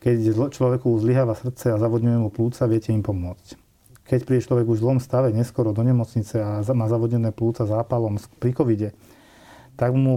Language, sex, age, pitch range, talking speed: Slovak, male, 40-59, 115-130 Hz, 175 wpm